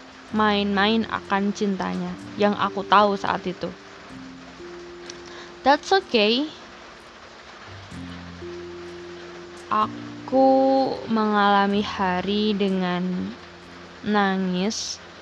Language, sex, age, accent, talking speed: Indonesian, female, 10-29, native, 60 wpm